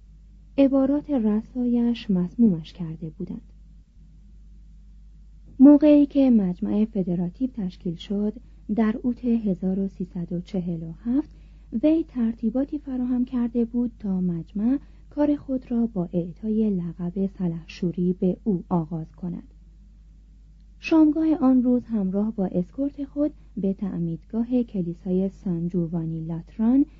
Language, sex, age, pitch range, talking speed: Persian, female, 40-59, 180-245 Hz, 100 wpm